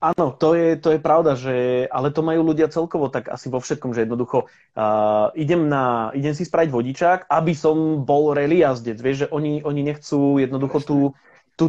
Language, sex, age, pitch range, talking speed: Slovak, male, 20-39, 125-150 Hz, 195 wpm